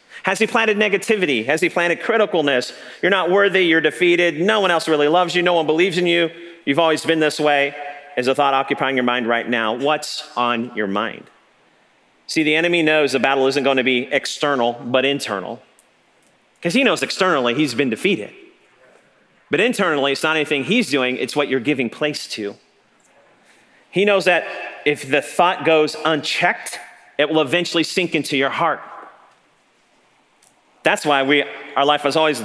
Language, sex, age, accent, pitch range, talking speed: English, male, 40-59, American, 130-170 Hz, 180 wpm